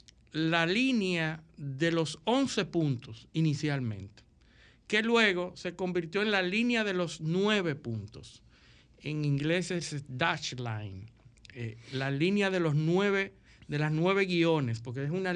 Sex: male